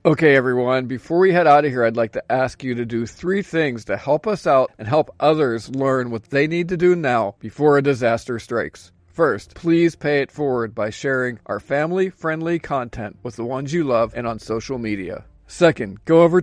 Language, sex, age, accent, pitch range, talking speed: English, male, 40-59, American, 120-165 Hz, 210 wpm